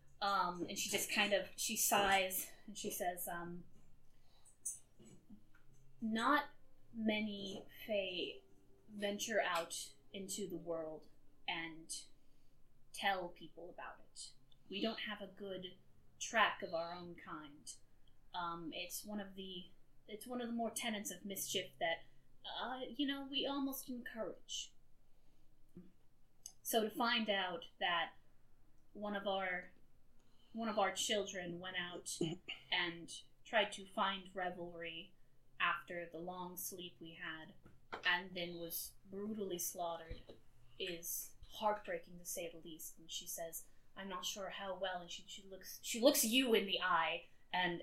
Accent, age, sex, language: American, 10-29, female, English